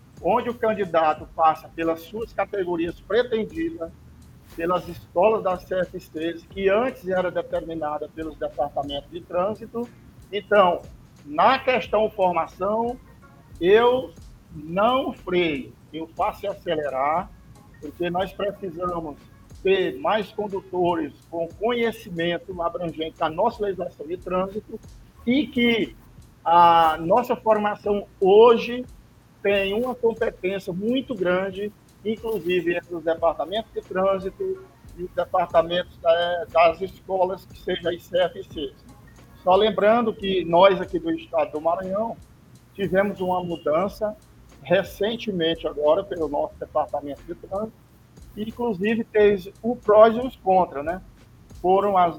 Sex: male